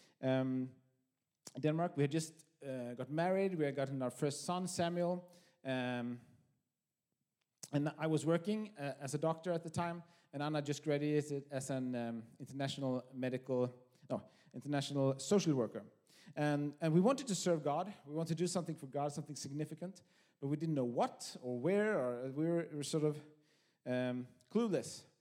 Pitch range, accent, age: 140-175 Hz, Norwegian, 30-49